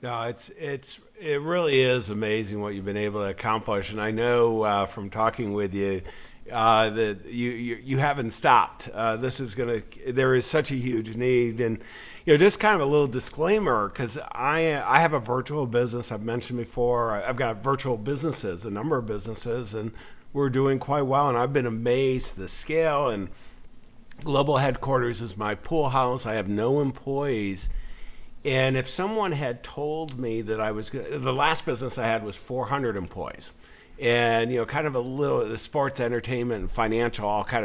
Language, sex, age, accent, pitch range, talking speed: English, male, 50-69, American, 110-135 Hz, 195 wpm